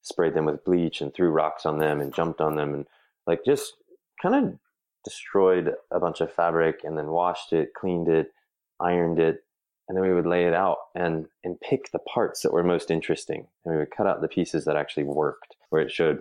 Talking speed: 220 wpm